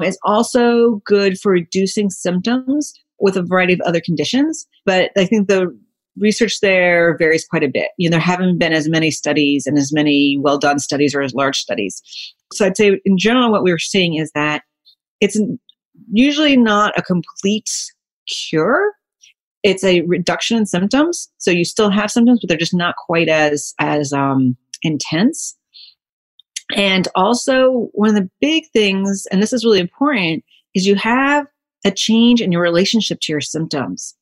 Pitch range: 165-230 Hz